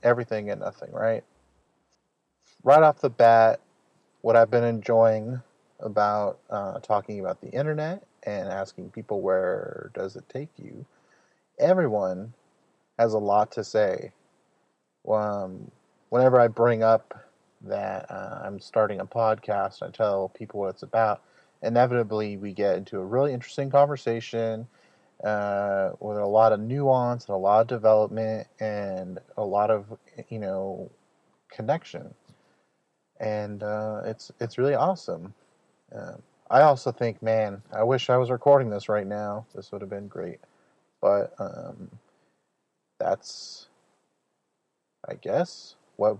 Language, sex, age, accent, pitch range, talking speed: English, male, 30-49, American, 105-125 Hz, 135 wpm